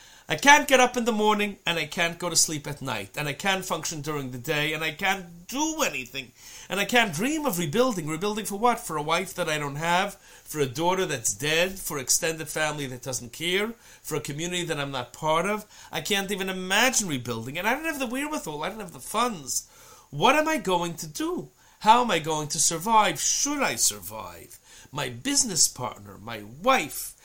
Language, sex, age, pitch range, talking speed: English, male, 40-59, 140-220 Hz, 220 wpm